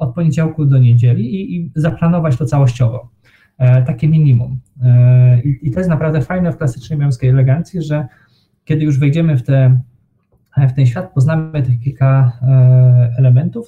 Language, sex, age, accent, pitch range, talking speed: Polish, male, 20-39, native, 125-145 Hz, 140 wpm